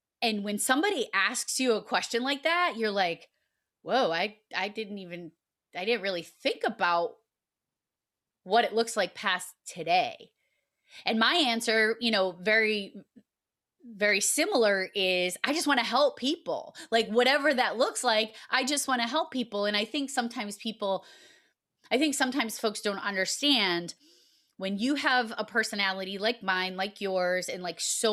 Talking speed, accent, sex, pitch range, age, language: 160 wpm, American, female, 190-245 Hz, 20-39, English